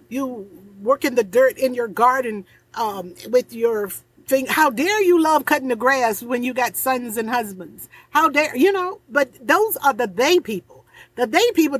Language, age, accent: English, 50-69, American